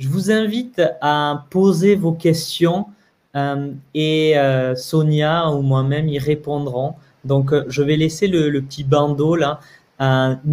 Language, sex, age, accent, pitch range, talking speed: French, male, 20-39, French, 140-165 Hz, 140 wpm